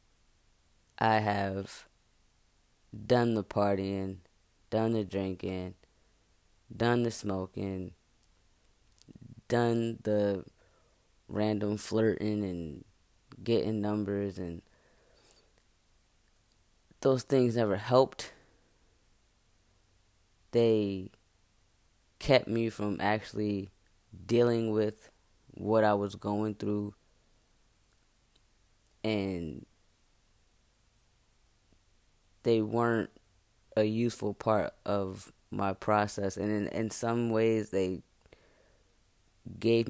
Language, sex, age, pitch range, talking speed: English, female, 20-39, 95-110 Hz, 75 wpm